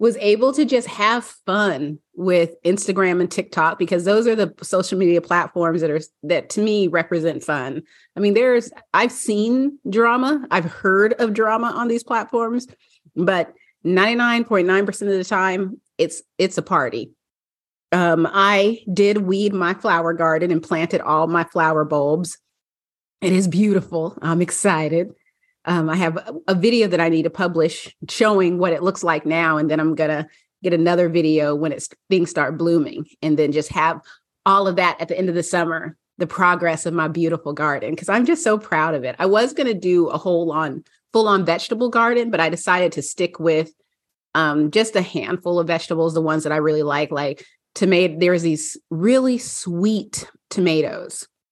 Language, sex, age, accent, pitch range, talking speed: English, female, 30-49, American, 165-210 Hz, 180 wpm